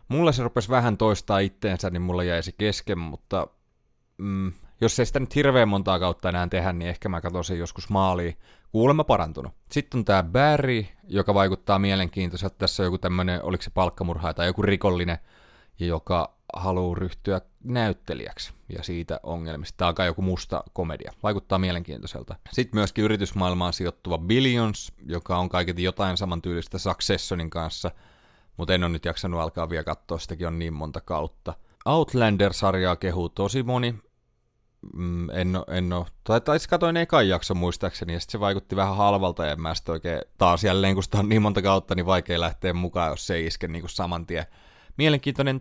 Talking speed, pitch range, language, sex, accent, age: 175 wpm, 85-105 Hz, Finnish, male, native, 30-49